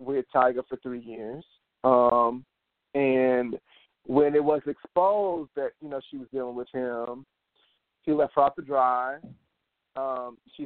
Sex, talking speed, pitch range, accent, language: male, 150 wpm, 125-145 Hz, American, English